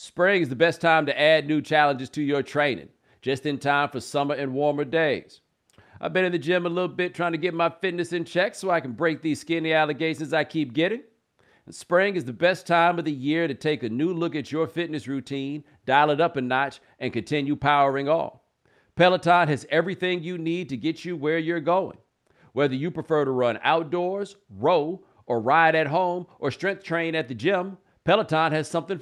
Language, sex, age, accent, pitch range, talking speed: English, male, 50-69, American, 145-170 Hz, 210 wpm